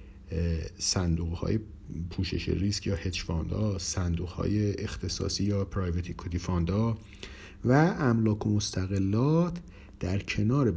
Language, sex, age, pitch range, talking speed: Persian, male, 50-69, 90-115 Hz, 110 wpm